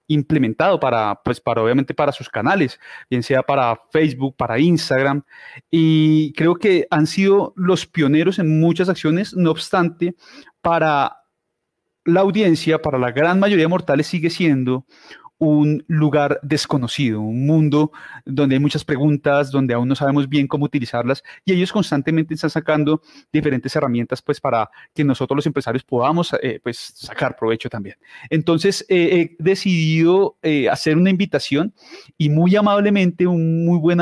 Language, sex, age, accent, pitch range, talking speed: Spanish, male, 30-49, Colombian, 135-165 Hz, 150 wpm